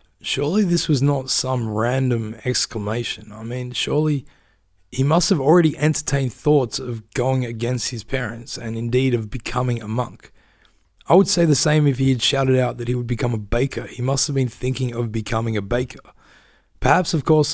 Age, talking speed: 20-39, 190 wpm